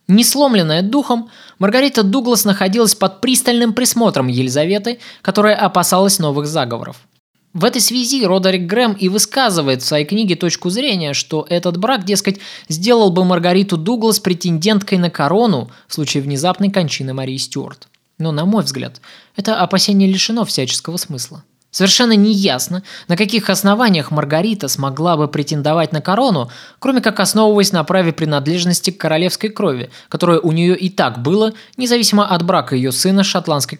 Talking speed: 150 wpm